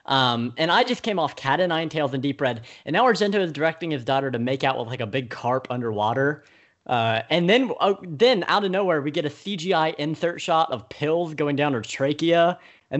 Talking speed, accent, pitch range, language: 230 wpm, American, 120-160 Hz, English